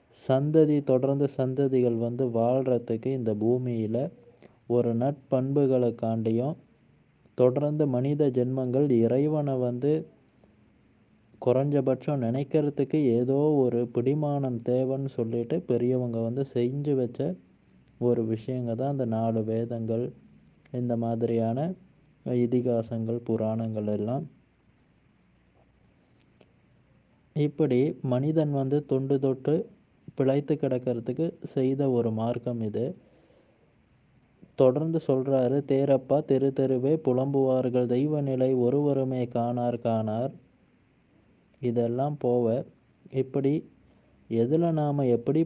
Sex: male